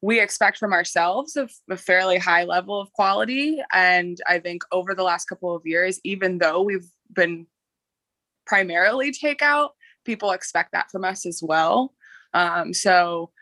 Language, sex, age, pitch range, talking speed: English, female, 20-39, 170-210 Hz, 155 wpm